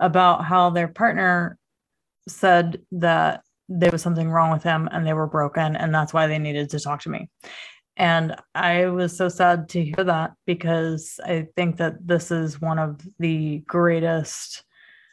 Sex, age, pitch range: female, 20-39, 165-190 Hz